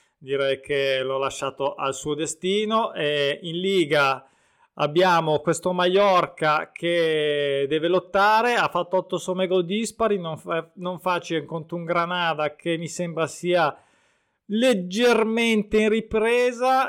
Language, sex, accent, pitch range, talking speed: Italian, male, native, 160-200 Hz, 130 wpm